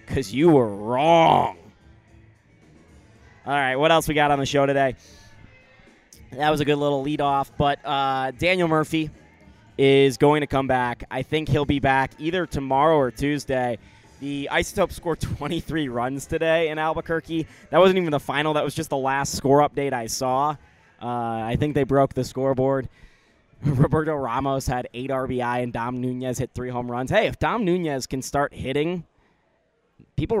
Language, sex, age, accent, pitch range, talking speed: English, male, 20-39, American, 125-150 Hz, 170 wpm